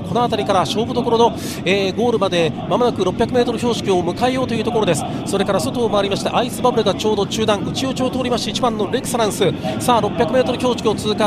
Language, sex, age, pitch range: Japanese, male, 40-59, 230-270 Hz